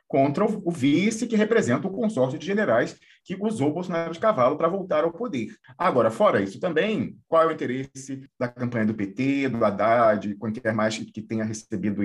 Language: Portuguese